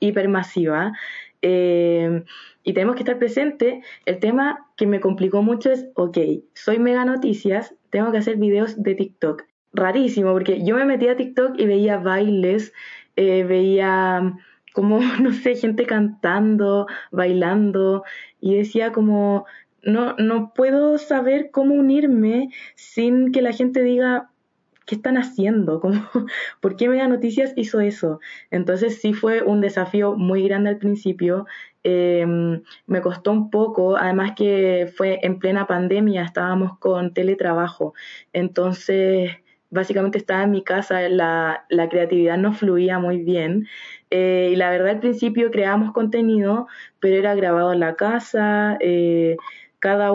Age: 20-39